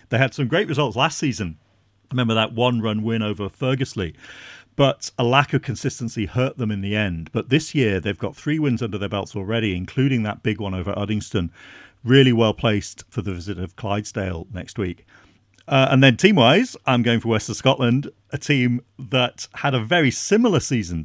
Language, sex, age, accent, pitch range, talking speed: English, male, 40-59, British, 100-130 Hz, 195 wpm